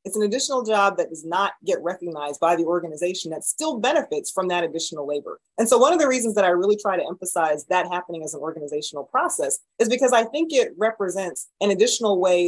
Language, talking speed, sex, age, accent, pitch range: English, 220 wpm, female, 30-49, American, 160-215 Hz